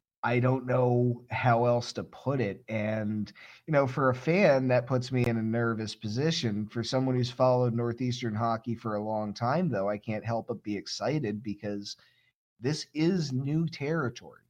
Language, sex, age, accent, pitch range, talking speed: English, male, 30-49, American, 110-130 Hz, 180 wpm